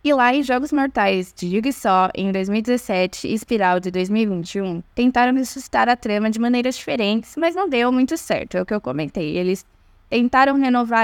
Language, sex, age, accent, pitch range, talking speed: Portuguese, female, 10-29, Brazilian, 195-240 Hz, 185 wpm